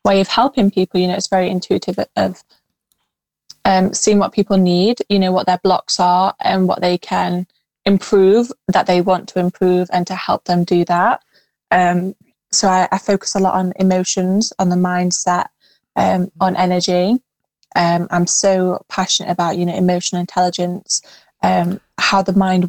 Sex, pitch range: female, 180-200 Hz